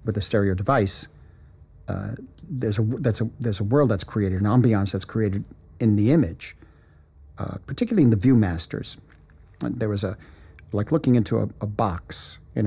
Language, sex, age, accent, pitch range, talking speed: English, male, 50-69, American, 95-120 Hz, 180 wpm